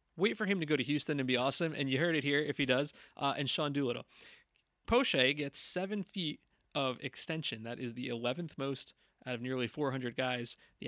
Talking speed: 215 wpm